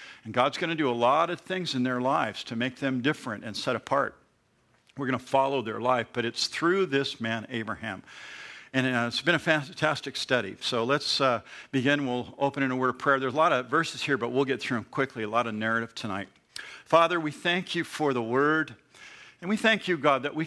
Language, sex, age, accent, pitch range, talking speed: English, male, 50-69, American, 125-165 Hz, 230 wpm